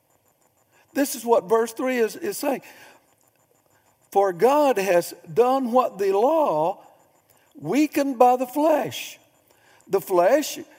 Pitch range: 190-275 Hz